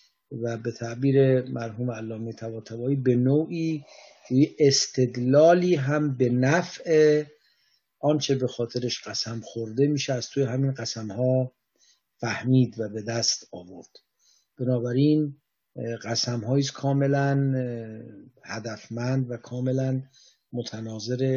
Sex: male